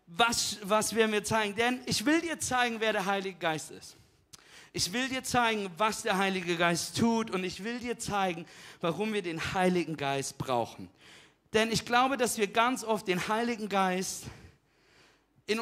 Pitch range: 185-250 Hz